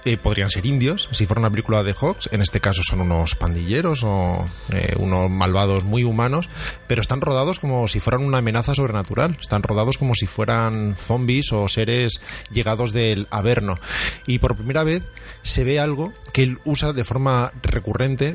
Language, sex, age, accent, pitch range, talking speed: Spanish, male, 20-39, Spanish, 100-130 Hz, 180 wpm